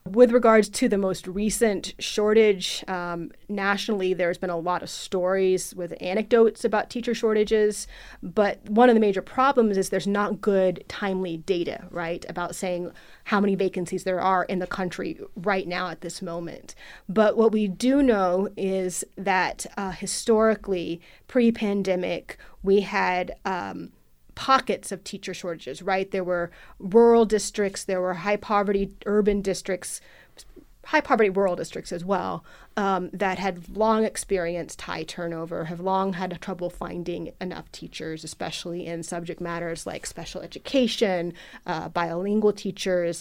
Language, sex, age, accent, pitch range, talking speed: English, female, 30-49, American, 175-210 Hz, 145 wpm